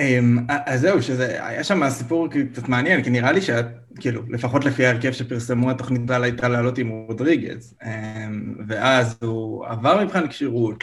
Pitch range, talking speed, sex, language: 120-140 Hz, 150 wpm, male, Hebrew